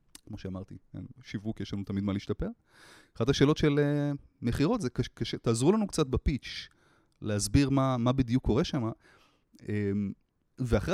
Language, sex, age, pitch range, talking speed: Hebrew, male, 30-49, 105-145 Hz, 135 wpm